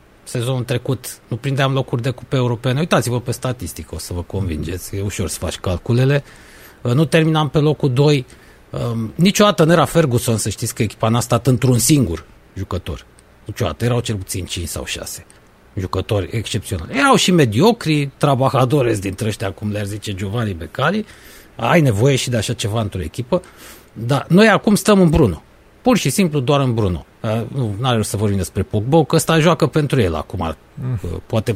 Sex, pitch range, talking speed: male, 100-140 Hz, 175 wpm